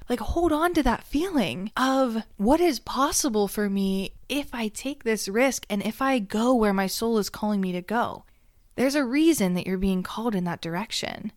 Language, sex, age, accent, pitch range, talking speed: English, female, 20-39, American, 195-260 Hz, 205 wpm